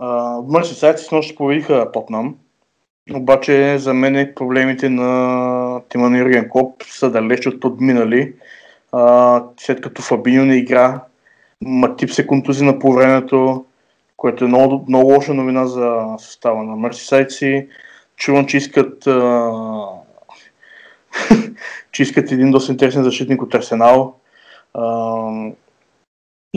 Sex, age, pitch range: male, 20-39, 125-140 Hz